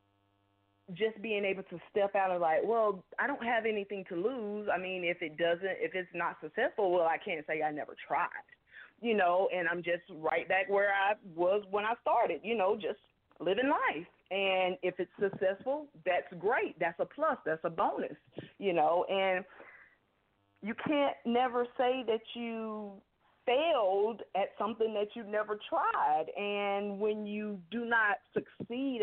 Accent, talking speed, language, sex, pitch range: American, 170 wpm, English, female, 175-215 Hz